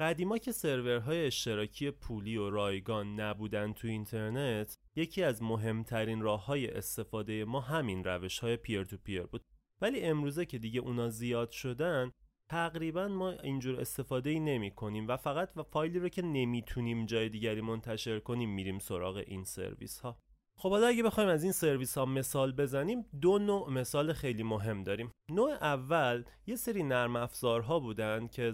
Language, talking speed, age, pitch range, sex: Persian, 170 wpm, 30-49, 110-145 Hz, male